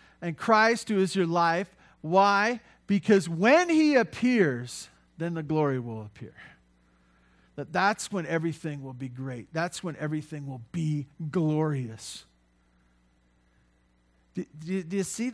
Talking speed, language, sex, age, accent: 130 wpm, English, male, 50-69, American